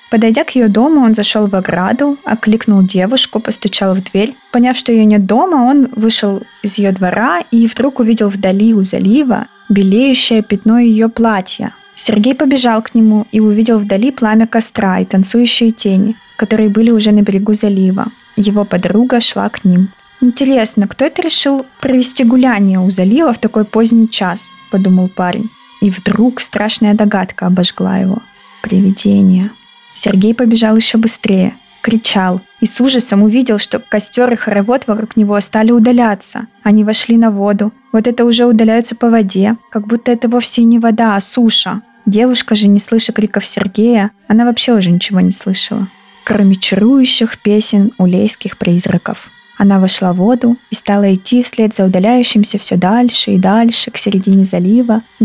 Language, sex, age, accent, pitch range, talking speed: Russian, female, 20-39, native, 200-235 Hz, 160 wpm